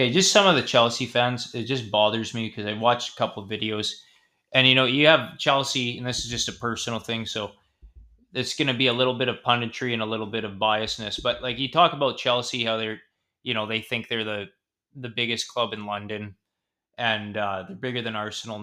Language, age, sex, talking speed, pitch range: English, 20-39, male, 230 wpm, 115-130 Hz